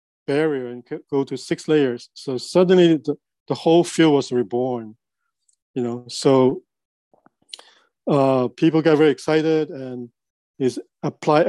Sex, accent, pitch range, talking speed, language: male, Japanese, 125-155 Hz, 130 wpm, English